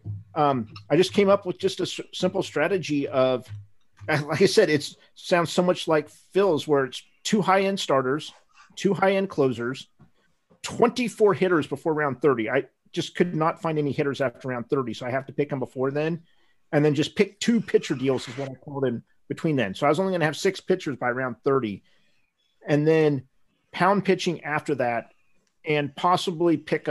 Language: English